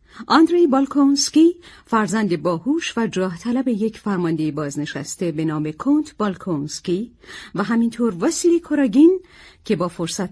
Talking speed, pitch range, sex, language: 120 wpm, 180-265 Hz, female, Persian